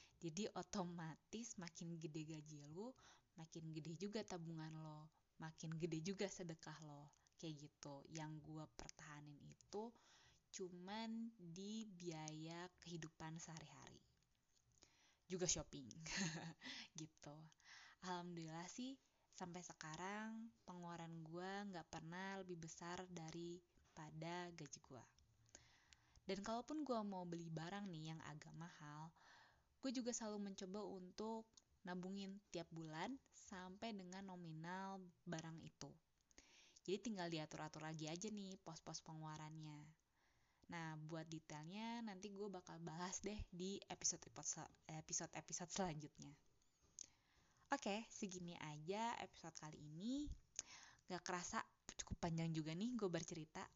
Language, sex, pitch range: Indonesian, female, 160-195 Hz